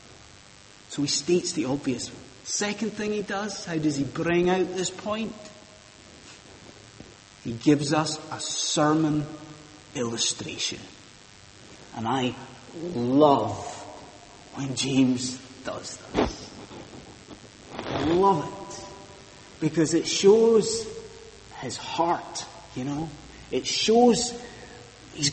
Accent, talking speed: British, 100 wpm